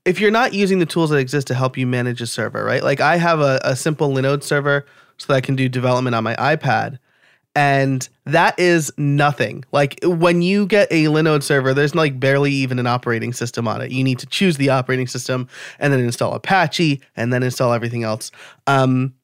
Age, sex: 20-39, male